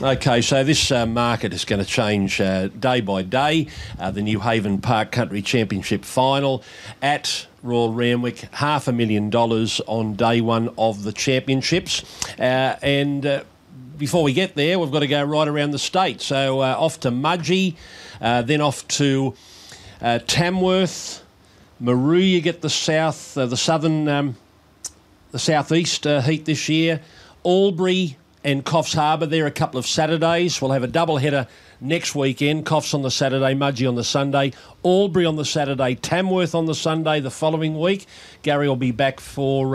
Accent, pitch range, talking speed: Australian, 125-160 Hz, 170 wpm